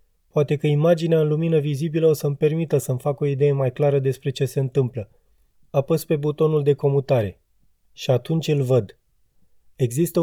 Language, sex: Romanian, male